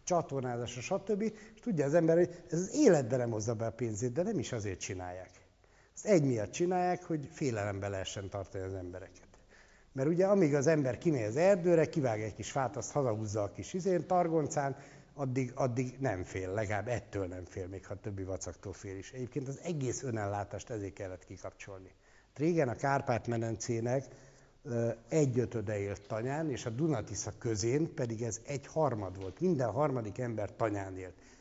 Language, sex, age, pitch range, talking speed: Hungarian, male, 60-79, 100-150 Hz, 165 wpm